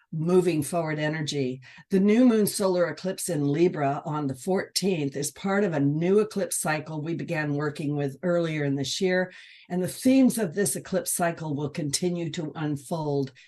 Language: English